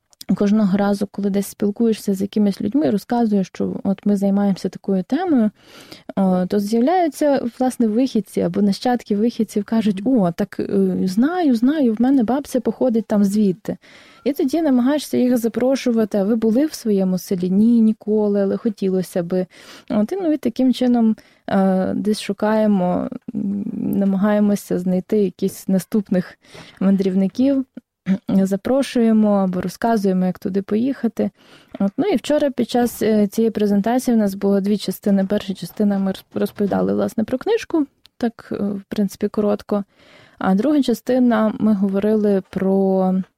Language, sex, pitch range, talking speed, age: Ukrainian, female, 195-245 Hz, 135 wpm, 20-39